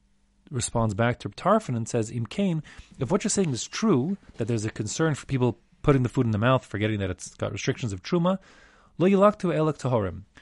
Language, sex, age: English, male, 40-59